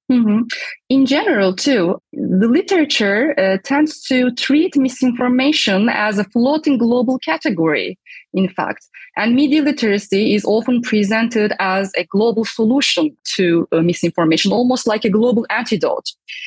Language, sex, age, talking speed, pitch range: English, female, 20-39, 135 wpm, 210-275 Hz